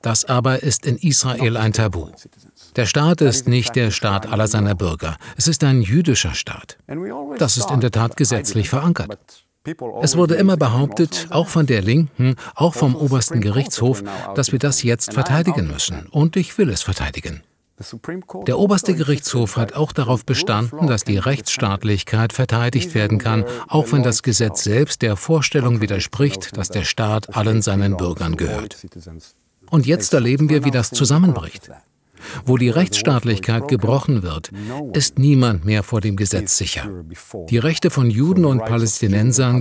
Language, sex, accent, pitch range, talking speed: German, male, German, 105-140 Hz, 160 wpm